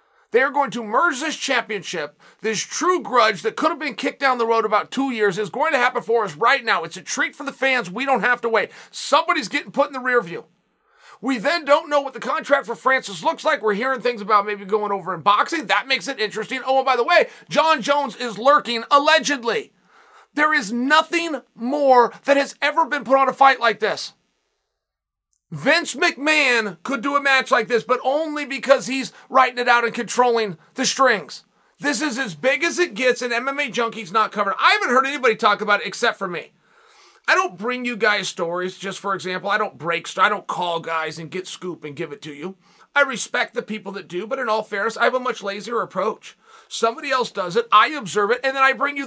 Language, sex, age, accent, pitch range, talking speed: English, male, 30-49, American, 215-285 Hz, 230 wpm